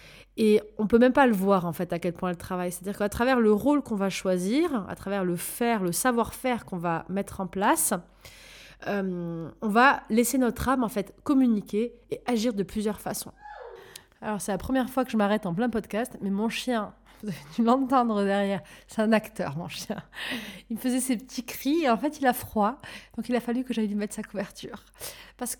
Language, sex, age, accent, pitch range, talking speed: French, female, 20-39, French, 205-260 Hz, 220 wpm